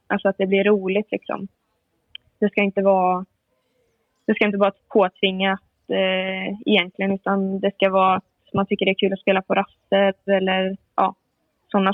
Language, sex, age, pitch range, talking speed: Swedish, female, 20-39, 190-205 Hz, 165 wpm